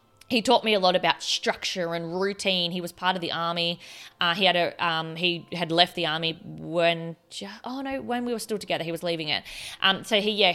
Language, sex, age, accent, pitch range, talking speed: English, female, 20-39, Australian, 165-195 Hz, 235 wpm